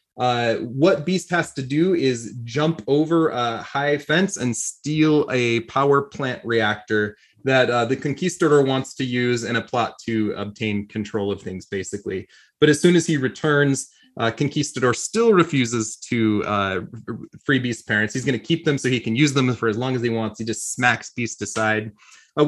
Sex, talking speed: male, 190 wpm